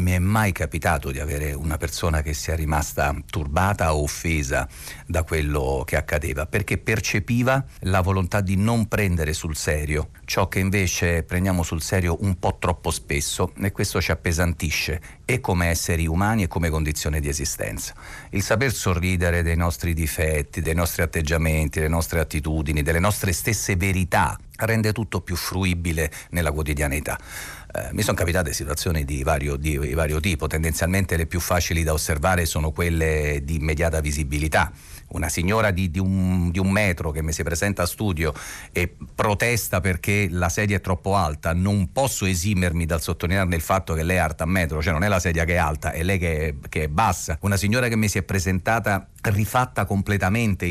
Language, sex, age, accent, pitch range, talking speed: Italian, male, 50-69, native, 80-95 Hz, 180 wpm